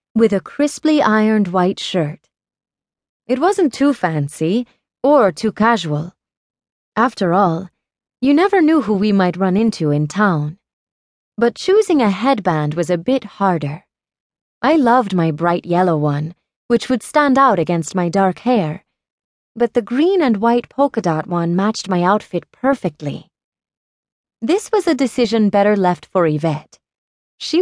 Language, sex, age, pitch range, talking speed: English, female, 30-49, 175-240 Hz, 150 wpm